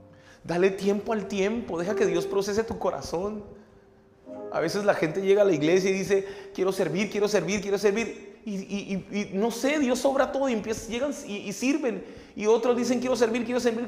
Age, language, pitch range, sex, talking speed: 30-49, Spanish, 140-225 Hz, male, 210 wpm